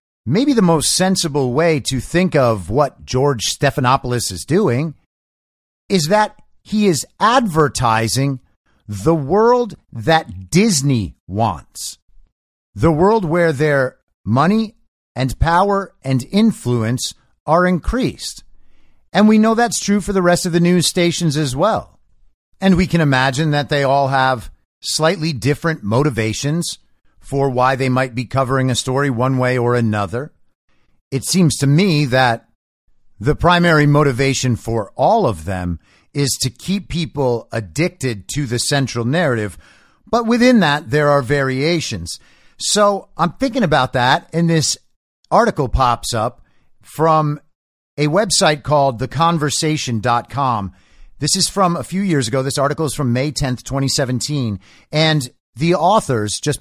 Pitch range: 120-165 Hz